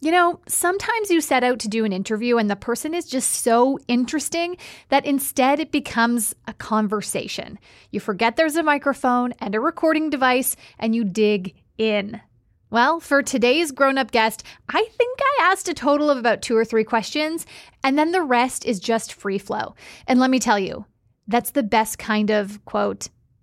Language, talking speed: English, 185 wpm